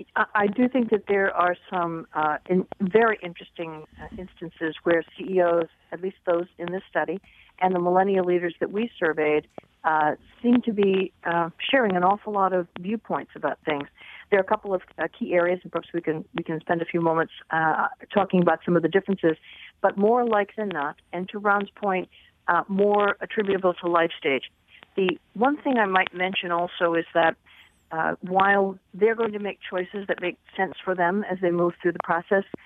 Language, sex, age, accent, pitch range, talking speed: English, female, 50-69, American, 170-195 Hz, 195 wpm